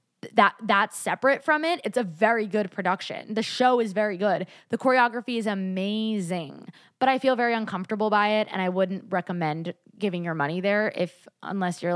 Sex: female